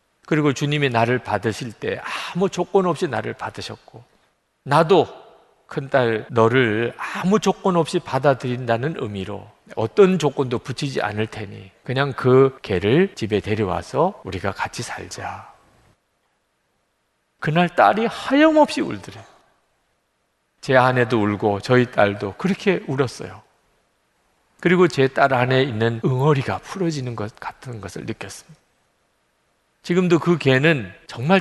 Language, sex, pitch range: Korean, male, 110-160 Hz